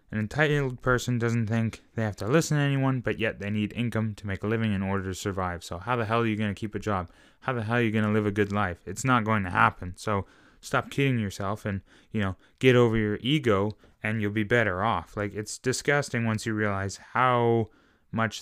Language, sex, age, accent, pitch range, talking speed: English, male, 20-39, American, 100-125 Hz, 245 wpm